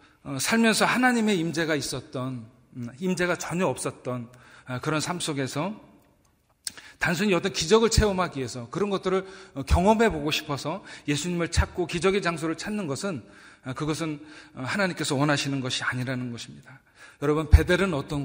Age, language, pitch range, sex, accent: 40-59, Korean, 135-180 Hz, male, native